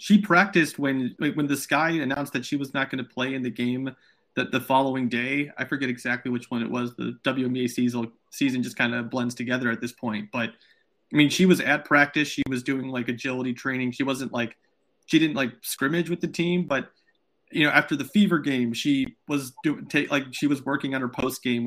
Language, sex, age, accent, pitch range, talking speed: English, male, 30-49, American, 120-150 Hz, 225 wpm